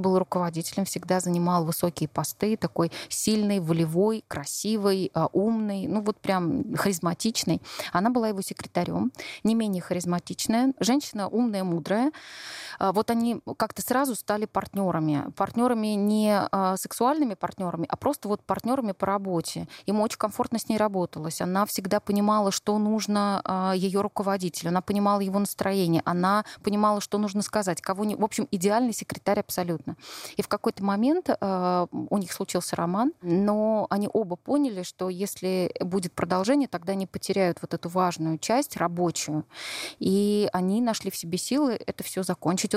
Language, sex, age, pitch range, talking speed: Russian, female, 20-39, 180-215 Hz, 145 wpm